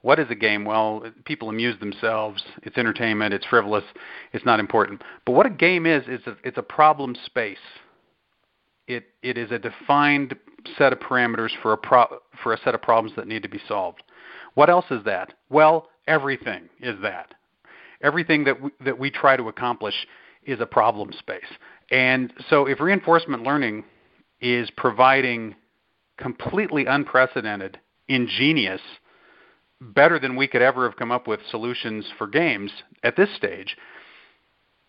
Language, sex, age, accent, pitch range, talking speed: English, male, 40-59, American, 115-145 Hz, 160 wpm